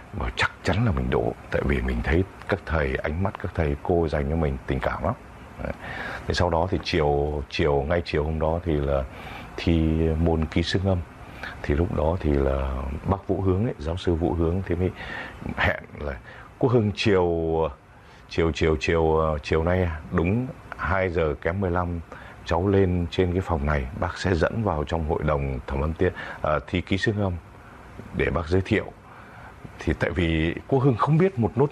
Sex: male